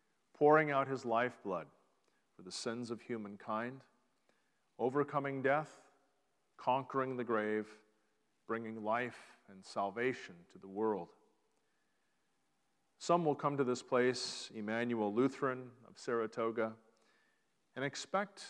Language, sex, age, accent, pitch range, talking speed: English, male, 40-59, American, 110-130 Hz, 105 wpm